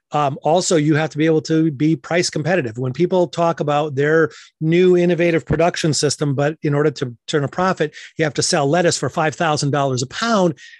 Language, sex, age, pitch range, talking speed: English, male, 30-49, 135-165 Hz, 200 wpm